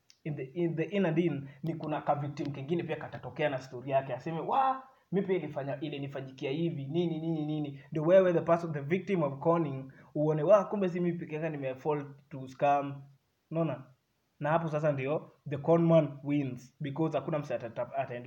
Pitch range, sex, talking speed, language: 130-160 Hz, male, 175 wpm, Swahili